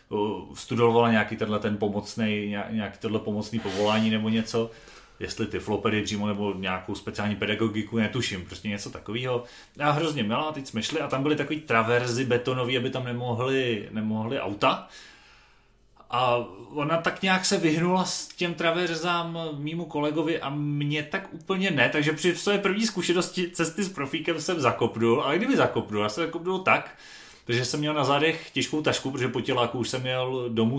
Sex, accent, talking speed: male, native, 165 wpm